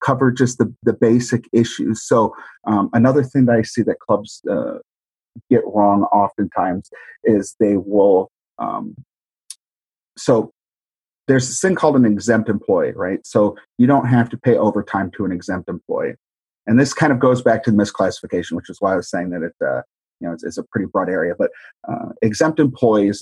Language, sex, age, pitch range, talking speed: English, male, 30-49, 105-120 Hz, 190 wpm